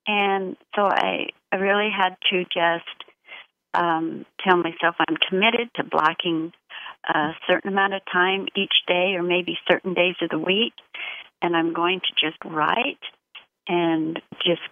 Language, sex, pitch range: English, female, 165-195 Hz